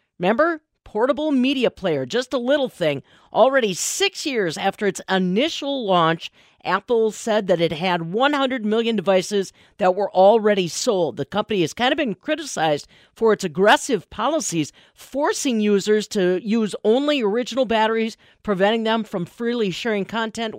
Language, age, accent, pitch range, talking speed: English, 40-59, American, 195-270 Hz, 150 wpm